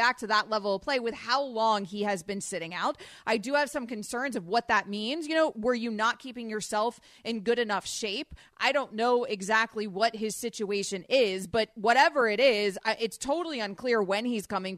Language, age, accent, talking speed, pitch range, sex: English, 30-49, American, 210 wpm, 210-275 Hz, female